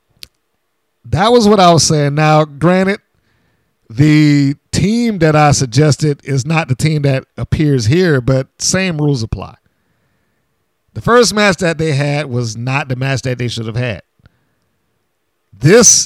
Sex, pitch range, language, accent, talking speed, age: male, 130-175 Hz, English, American, 150 wpm, 50-69